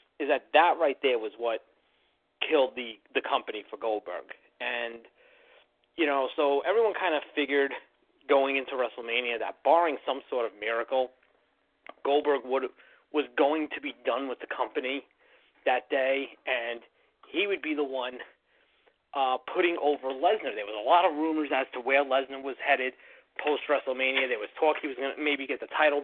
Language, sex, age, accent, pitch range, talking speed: English, male, 30-49, American, 130-195 Hz, 175 wpm